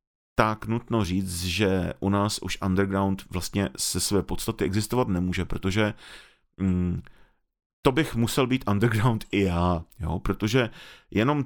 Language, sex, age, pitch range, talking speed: Czech, male, 30-49, 95-110 Hz, 130 wpm